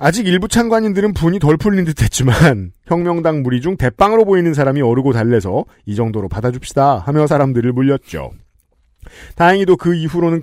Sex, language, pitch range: male, Korean, 130-180 Hz